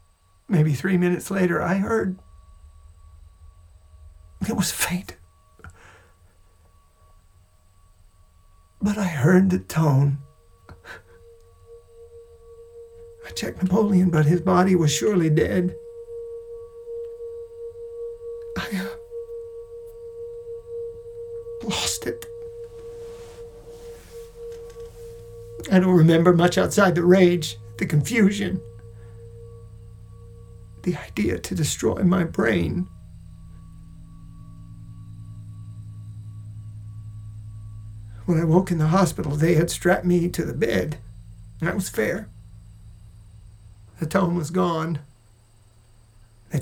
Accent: American